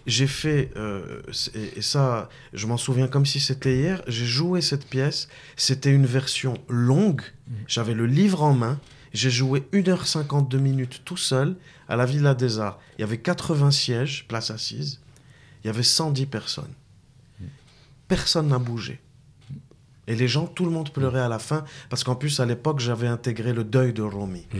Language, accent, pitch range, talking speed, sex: French, French, 125-150 Hz, 175 wpm, male